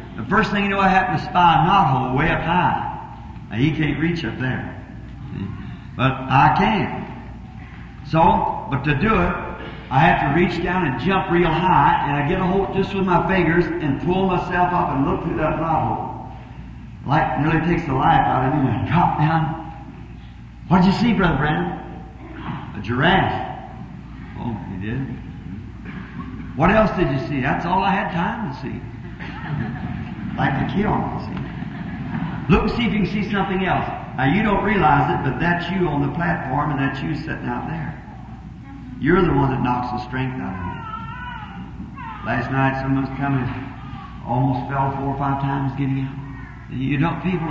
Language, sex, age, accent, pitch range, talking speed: English, male, 50-69, American, 135-175 Hz, 185 wpm